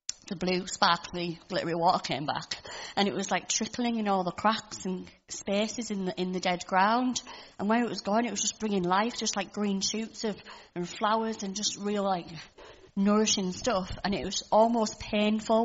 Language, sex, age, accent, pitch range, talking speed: English, female, 30-49, British, 185-220 Hz, 200 wpm